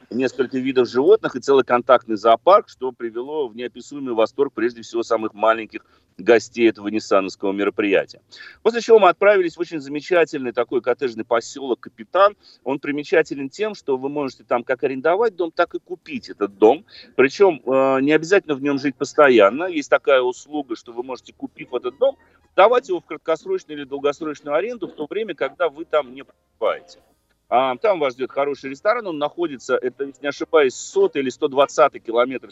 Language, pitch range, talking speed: Russian, 130-190 Hz, 170 wpm